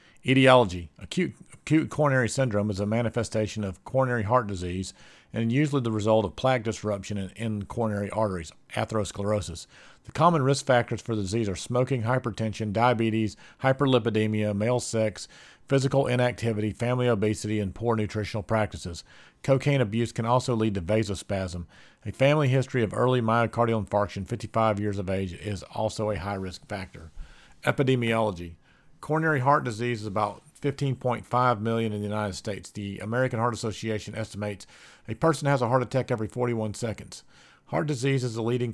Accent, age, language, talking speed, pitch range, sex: American, 40-59, English, 155 wpm, 105-125 Hz, male